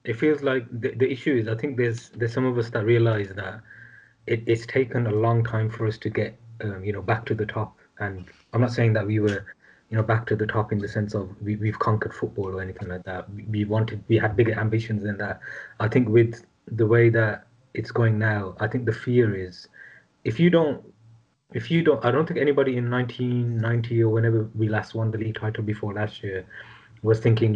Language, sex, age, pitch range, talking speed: English, male, 20-39, 105-115 Hz, 235 wpm